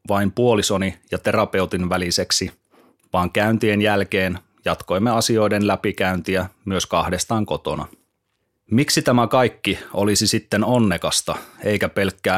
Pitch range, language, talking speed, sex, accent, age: 95-110 Hz, Finnish, 105 wpm, male, native, 30-49